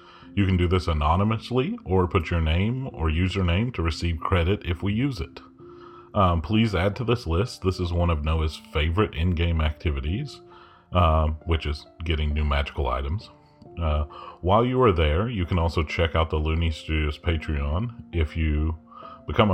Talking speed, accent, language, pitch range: 170 wpm, American, English, 80-95 Hz